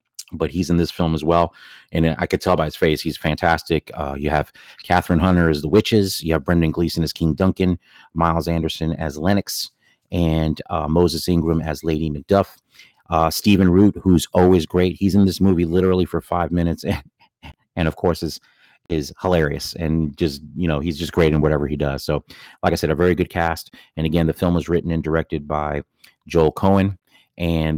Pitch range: 80-95 Hz